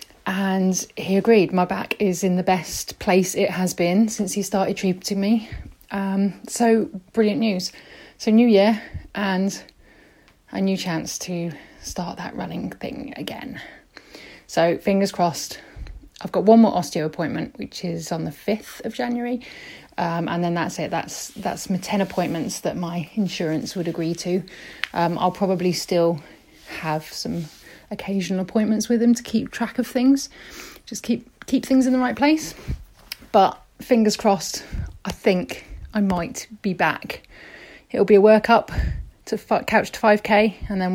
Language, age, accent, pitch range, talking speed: English, 20-39, British, 180-220 Hz, 160 wpm